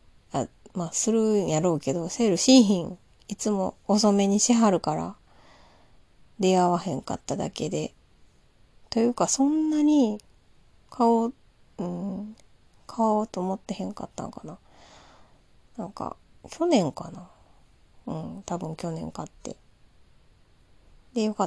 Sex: female